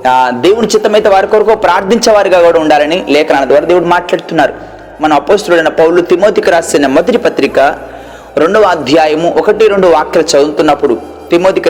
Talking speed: 130 wpm